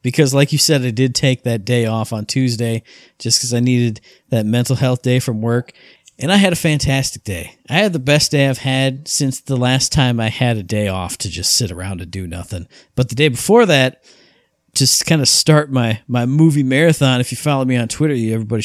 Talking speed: 230 wpm